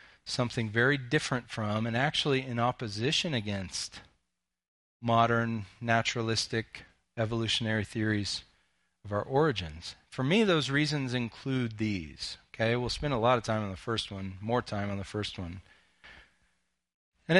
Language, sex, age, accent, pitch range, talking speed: English, male, 40-59, American, 115-165 Hz, 140 wpm